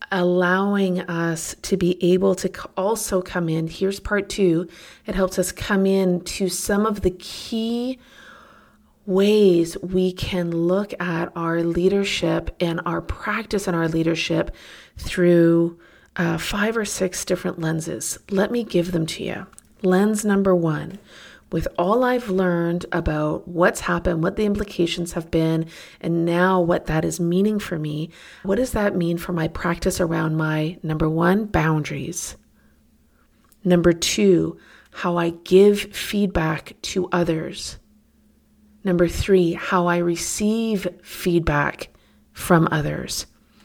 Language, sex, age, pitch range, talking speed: English, female, 30-49, 165-195 Hz, 135 wpm